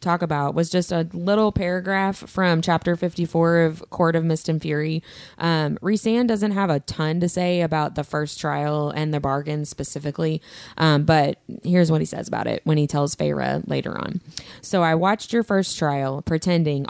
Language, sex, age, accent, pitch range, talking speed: English, female, 20-39, American, 150-180 Hz, 190 wpm